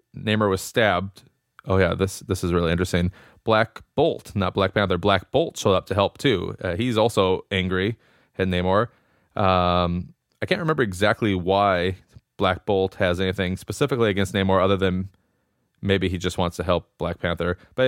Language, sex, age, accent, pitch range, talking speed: English, male, 30-49, American, 95-110 Hz, 175 wpm